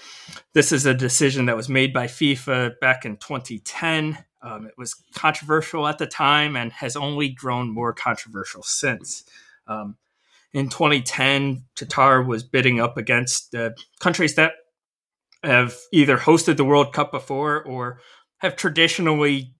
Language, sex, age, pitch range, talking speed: English, male, 20-39, 125-150 Hz, 145 wpm